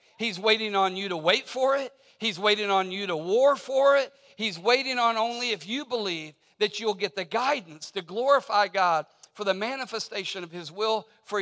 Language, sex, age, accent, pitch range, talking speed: English, male, 50-69, American, 155-220 Hz, 200 wpm